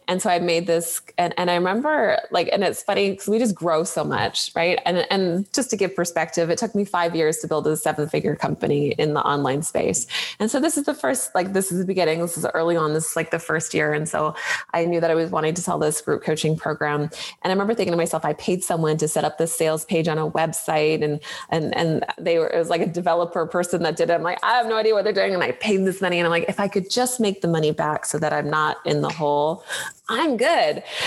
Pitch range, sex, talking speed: 160-220 Hz, female, 270 wpm